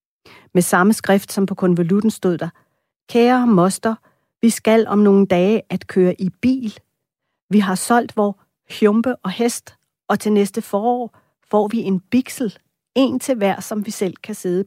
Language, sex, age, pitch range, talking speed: Danish, female, 40-59, 175-210 Hz, 170 wpm